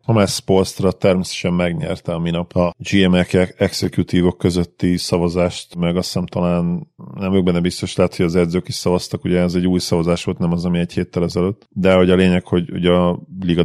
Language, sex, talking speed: Hungarian, male, 205 wpm